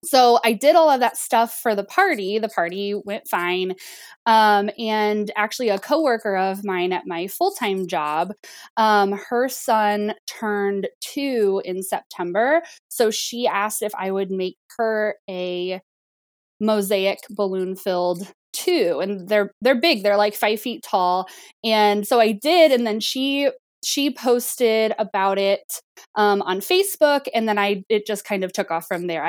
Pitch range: 200-240 Hz